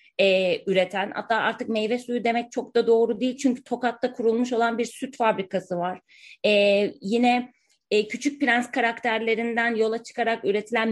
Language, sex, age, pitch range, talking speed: Turkish, female, 30-49, 200-250 Hz, 155 wpm